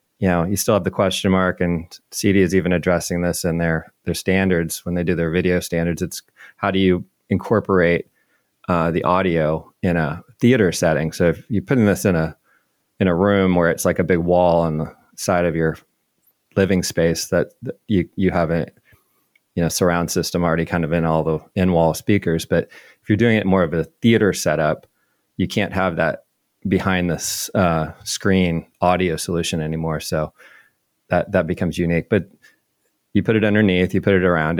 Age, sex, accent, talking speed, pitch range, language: 30-49, male, American, 195 wpm, 85-100 Hz, English